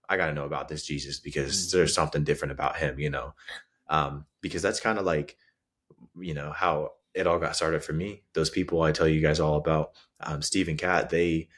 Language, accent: English, American